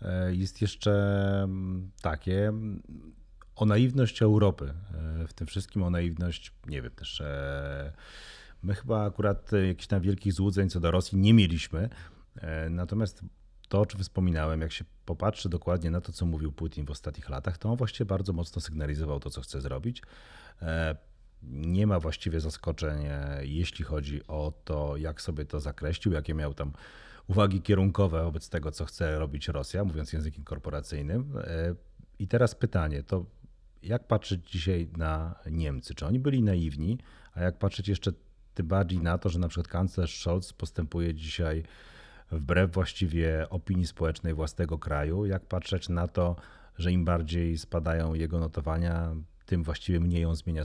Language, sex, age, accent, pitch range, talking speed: Polish, male, 40-59, native, 80-95 Hz, 150 wpm